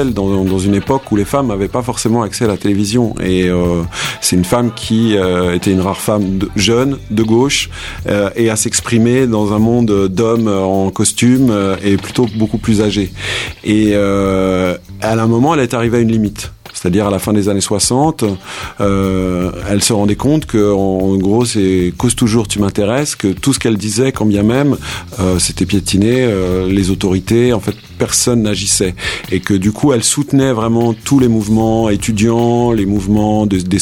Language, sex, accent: English, male, French